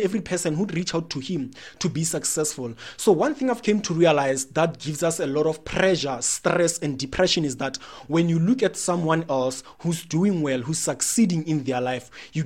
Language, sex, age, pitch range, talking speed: English, male, 30-49, 140-180 Hz, 210 wpm